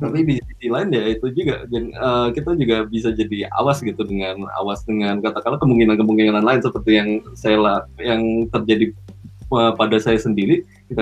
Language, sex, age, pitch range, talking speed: Indonesian, male, 20-39, 100-120 Hz, 165 wpm